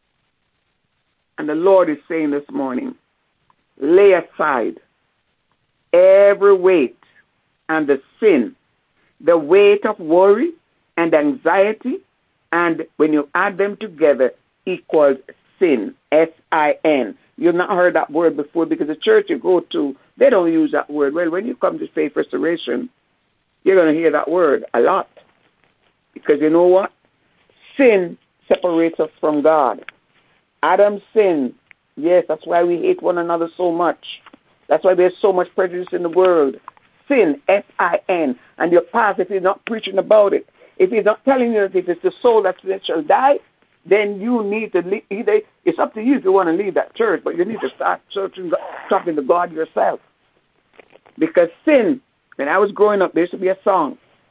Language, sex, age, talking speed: English, male, 60-79, 170 wpm